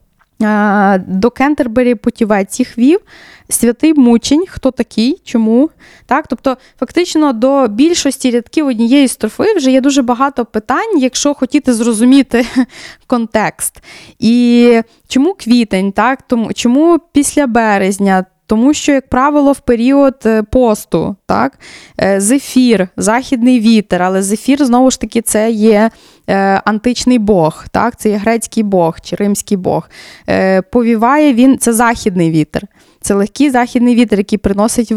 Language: Ukrainian